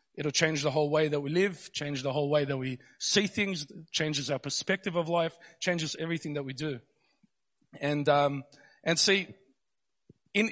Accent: Australian